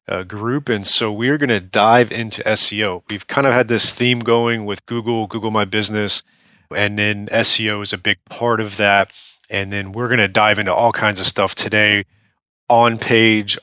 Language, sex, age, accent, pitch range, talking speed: English, male, 30-49, American, 95-115 Hz, 190 wpm